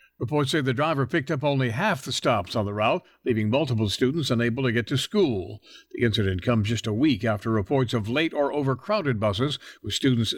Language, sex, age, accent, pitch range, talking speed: English, male, 60-79, American, 115-150 Hz, 210 wpm